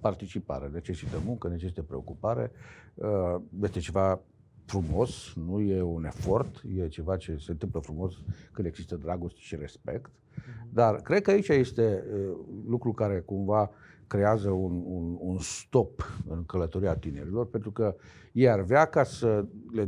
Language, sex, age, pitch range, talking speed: Romanian, male, 50-69, 95-125 Hz, 140 wpm